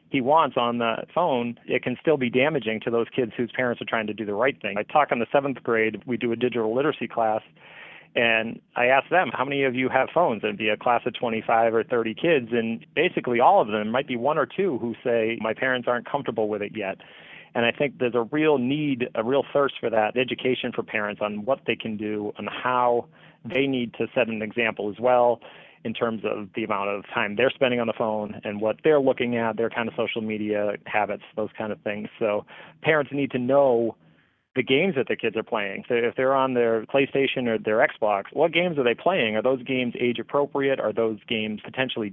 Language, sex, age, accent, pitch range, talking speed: English, male, 30-49, American, 110-130 Hz, 235 wpm